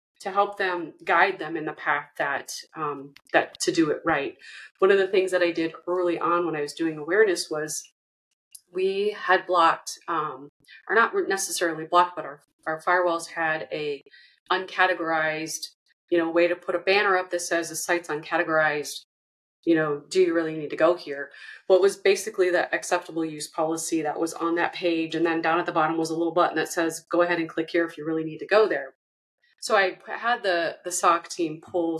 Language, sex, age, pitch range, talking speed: English, female, 30-49, 160-185 Hz, 210 wpm